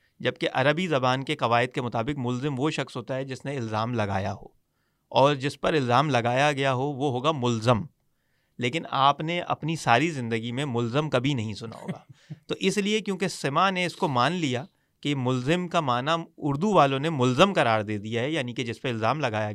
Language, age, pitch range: English, 30-49, 125-165 Hz